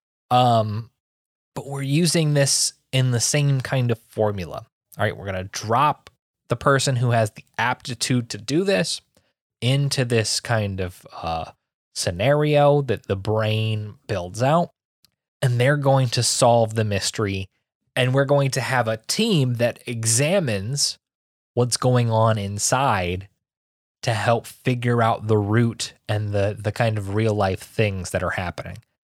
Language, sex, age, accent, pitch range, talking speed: English, male, 20-39, American, 110-135 Hz, 150 wpm